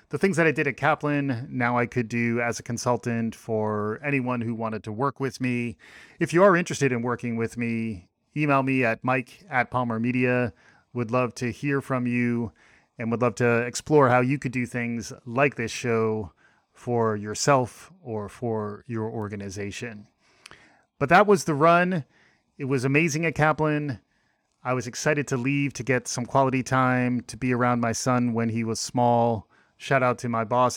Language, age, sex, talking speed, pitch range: English, 30-49, male, 185 wpm, 115-135 Hz